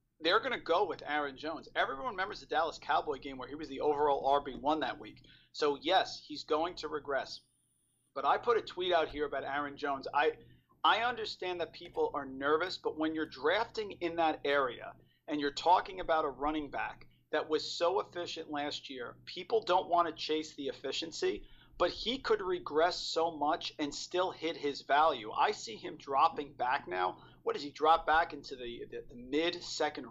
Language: English